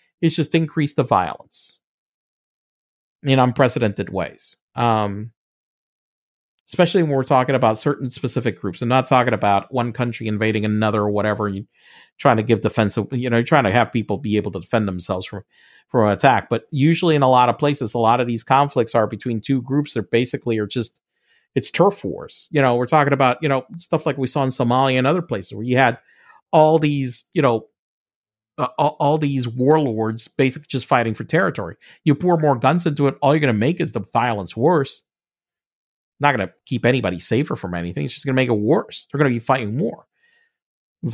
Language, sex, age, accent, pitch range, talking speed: English, male, 40-59, American, 115-150 Hz, 205 wpm